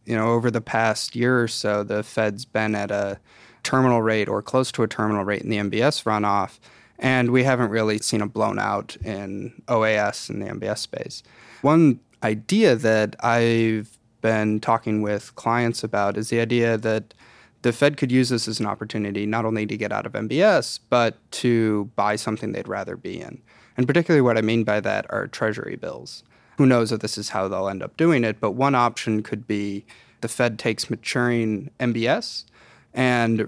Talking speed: 190 wpm